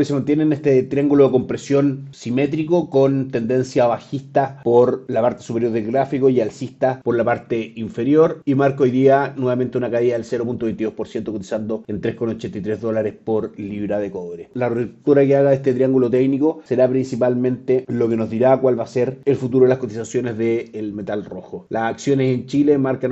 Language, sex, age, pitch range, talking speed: Spanish, male, 30-49, 115-135 Hz, 185 wpm